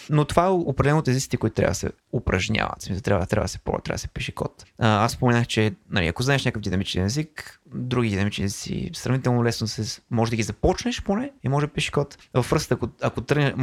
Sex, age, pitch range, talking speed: male, 20-39, 100-130 Hz, 205 wpm